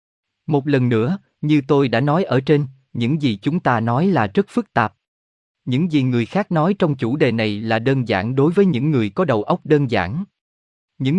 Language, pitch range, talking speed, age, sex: Vietnamese, 115-165 Hz, 215 wpm, 20-39, male